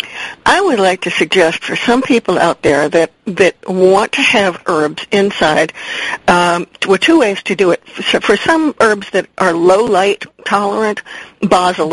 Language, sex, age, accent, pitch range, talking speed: English, female, 50-69, American, 180-215 Hz, 165 wpm